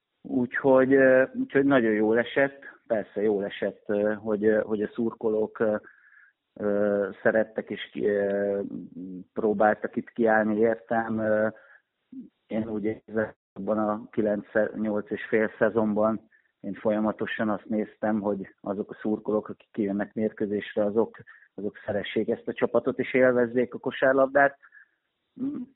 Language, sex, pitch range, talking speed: Hungarian, male, 105-120 Hz, 110 wpm